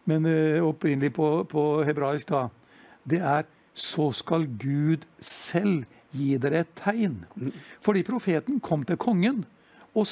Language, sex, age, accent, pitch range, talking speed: English, male, 60-79, Swedish, 135-180 Hz, 135 wpm